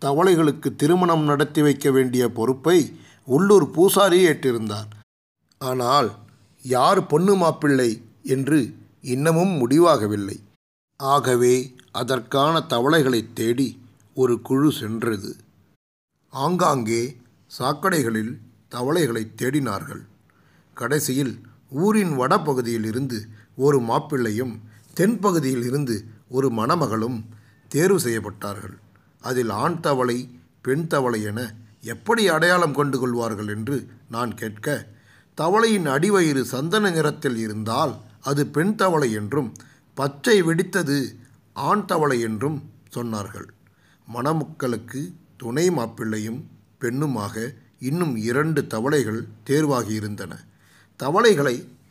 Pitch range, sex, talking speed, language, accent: 115-150 Hz, male, 85 wpm, Tamil, native